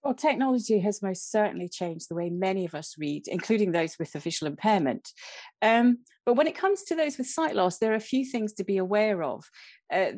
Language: English